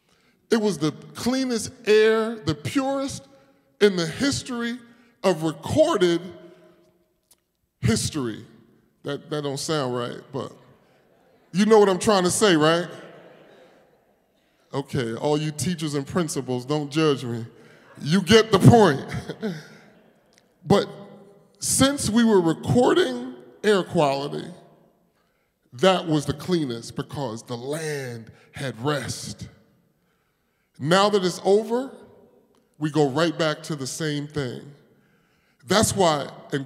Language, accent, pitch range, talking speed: English, American, 150-215 Hz, 115 wpm